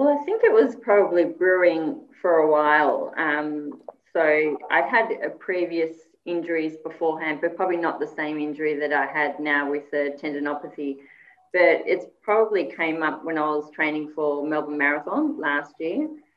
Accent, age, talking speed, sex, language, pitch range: Australian, 30-49, 165 wpm, female, English, 150-170 Hz